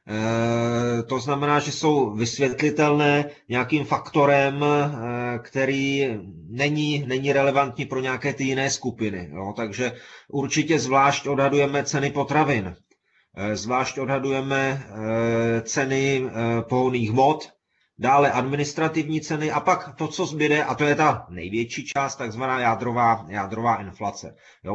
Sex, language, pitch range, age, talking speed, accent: male, Czech, 120-150 Hz, 30-49, 115 wpm, native